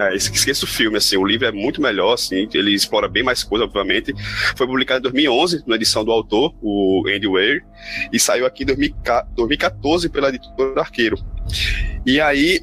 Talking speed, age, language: 175 wpm, 20-39, Portuguese